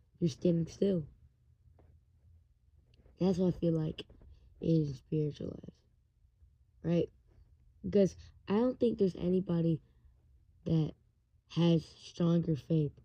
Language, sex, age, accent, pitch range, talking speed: English, female, 20-39, American, 140-180 Hz, 95 wpm